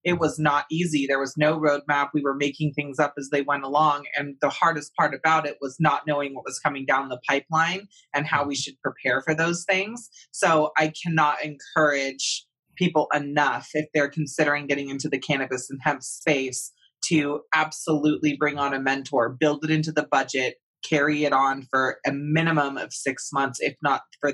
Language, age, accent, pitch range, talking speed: English, 20-39, American, 135-160 Hz, 195 wpm